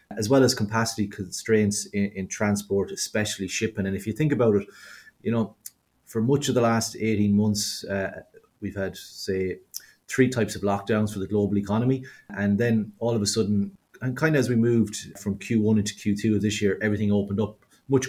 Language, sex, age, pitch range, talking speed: English, male, 30-49, 100-115 Hz, 200 wpm